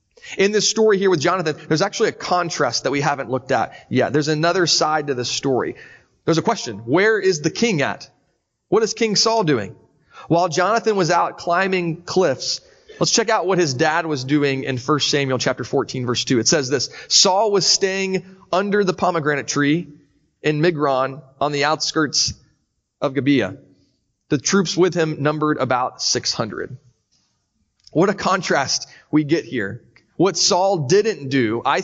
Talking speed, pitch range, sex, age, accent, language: 170 wpm, 140-185 Hz, male, 30-49, American, English